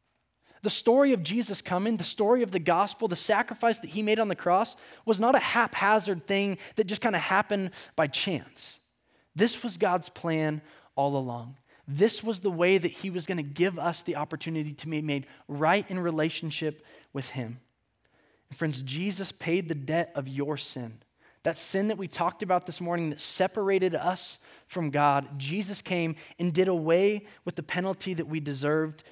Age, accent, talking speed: 20-39, American, 185 wpm